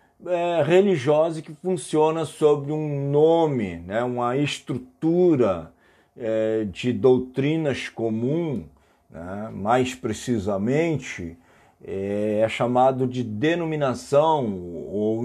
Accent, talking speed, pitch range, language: Brazilian, 90 wpm, 115-150 Hz, Portuguese